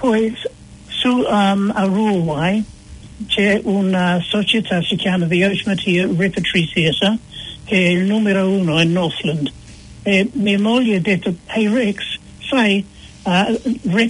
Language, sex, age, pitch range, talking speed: Italian, male, 60-79, 180-220 Hz, 125 wpm